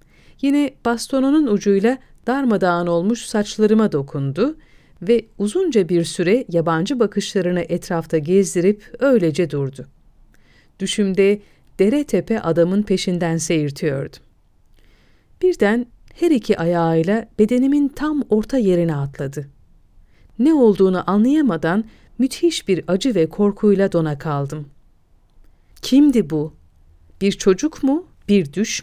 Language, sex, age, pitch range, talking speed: Turkish, female, 40-59, 165-240 Hz, 100 wpm